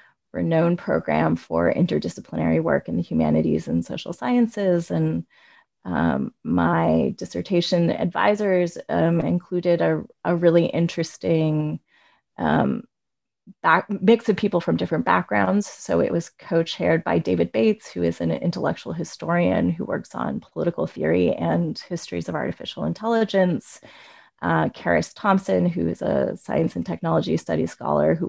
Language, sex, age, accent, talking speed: English, female, 30-49, American, 135 wpm